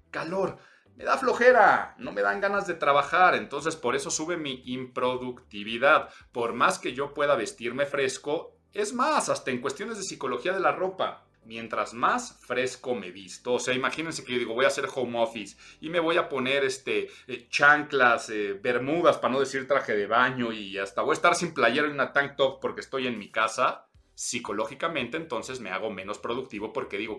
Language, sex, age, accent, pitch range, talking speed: Spanish, male, 40-59, Mexican, 125-175 Hz, 195 wpm